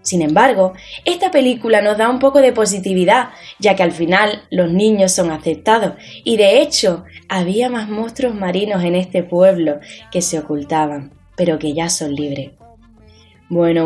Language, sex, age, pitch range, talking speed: Spanish, female, 10-29, 175-255 Hz, 160 wpm